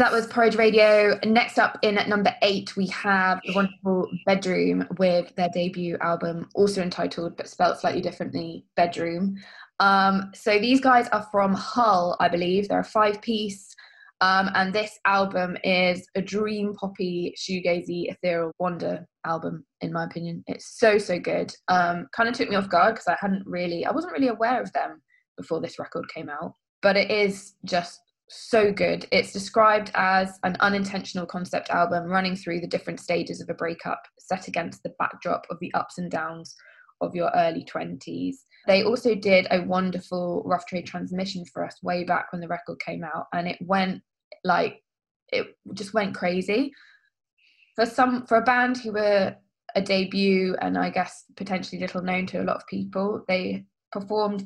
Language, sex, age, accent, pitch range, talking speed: English, female, 20-39, British, 180-210 Hz, 180 wpm